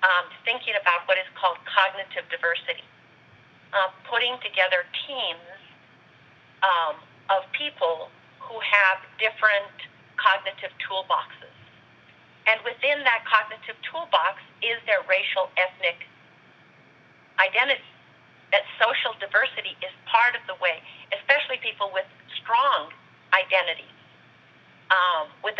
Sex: female